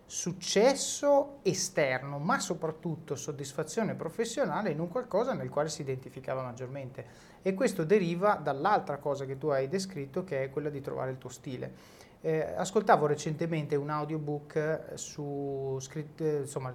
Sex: male